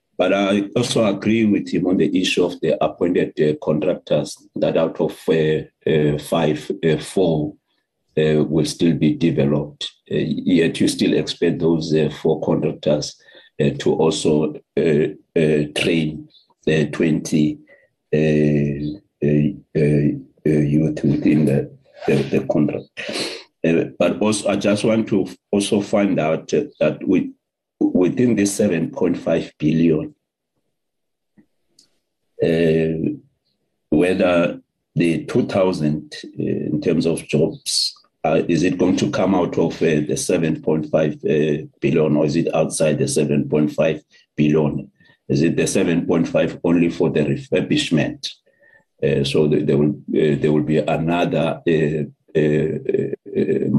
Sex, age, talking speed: male, 50-69, 135 wpm